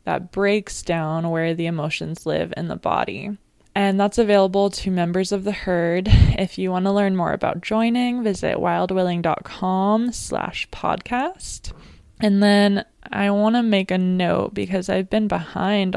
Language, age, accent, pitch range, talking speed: English, 20-39, American, 180-205 Hz, 150 wpm